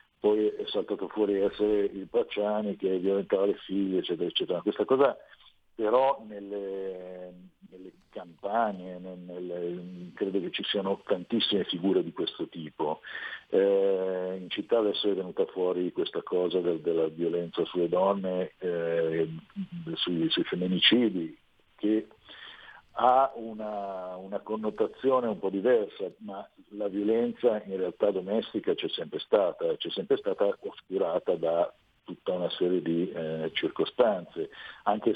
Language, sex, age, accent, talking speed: Italian, male, 50-69, native, 135 wpm